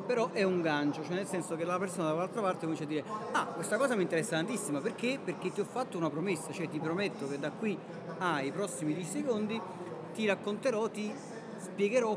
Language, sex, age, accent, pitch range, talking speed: Italian, male, 40-59, native, 150-185 Hz, 205 wpm